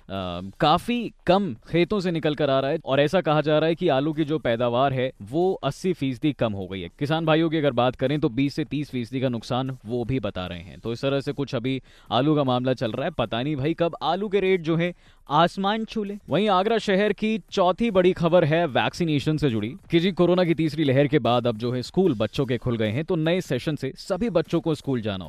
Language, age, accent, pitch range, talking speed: Hindi, 20-39, native, 120-165 Hz, 255 wpm